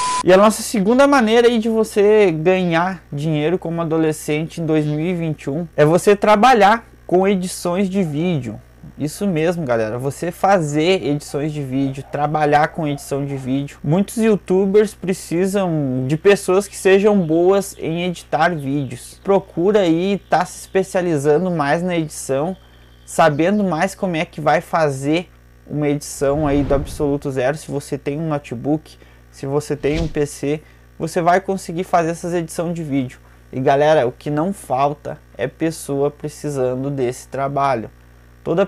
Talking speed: 150 wpm